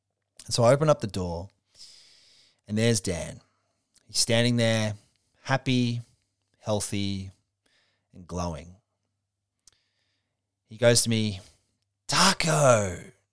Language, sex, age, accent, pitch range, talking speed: English, male, 30-49, Australian, 95-115 Hz, 100 wpm